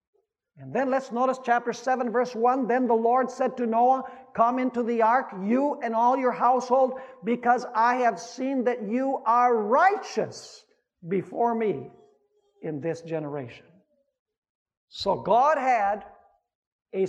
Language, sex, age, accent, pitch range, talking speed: English, male, 60-79, American, 215-290 Hz, 140 wpm